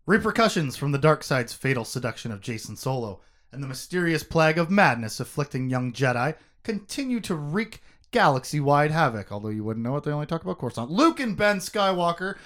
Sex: male